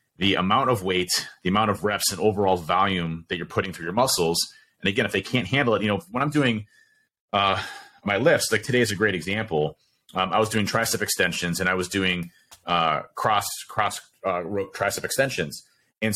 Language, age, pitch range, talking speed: English, 30-49, 95-120 Hz, 205 wpm